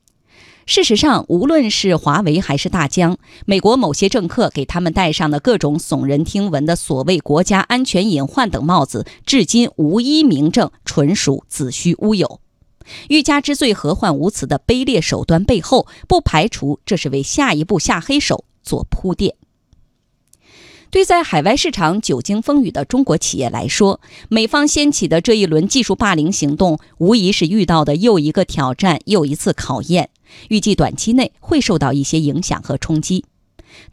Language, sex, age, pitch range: Chinese, female, 20-39, 155-260 Hz